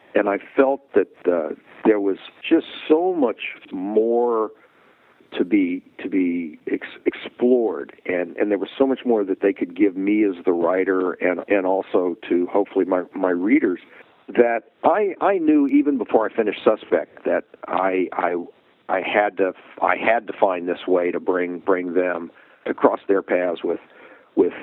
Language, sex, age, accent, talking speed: English, male, 50-69, American, 170 wpm